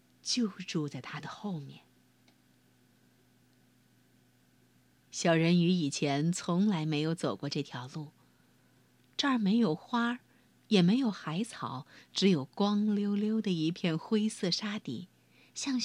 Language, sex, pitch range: Chinese, female, 145-225 Hz